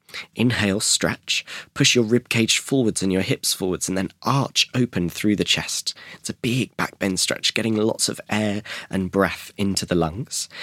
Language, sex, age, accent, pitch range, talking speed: English, male, 20-39, British, 95-115 Hz, 175 wpm